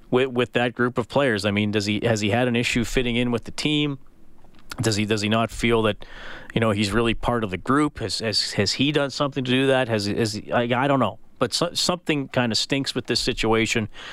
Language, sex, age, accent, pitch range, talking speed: English, male, 40-59, American, 110-135 Hz, 250 wpm